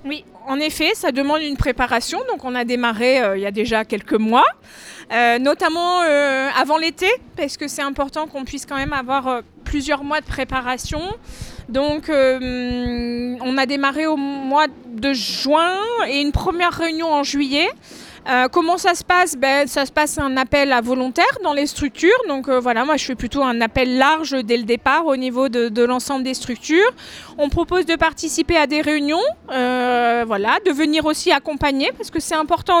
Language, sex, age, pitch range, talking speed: French, female, 20-39, 255-325 Hz, 190 wpm